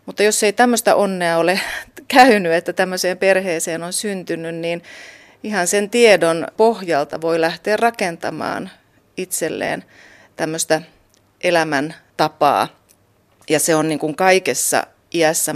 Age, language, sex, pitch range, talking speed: 30-49, Finnish, female, 165-215 Hz, 115 wpm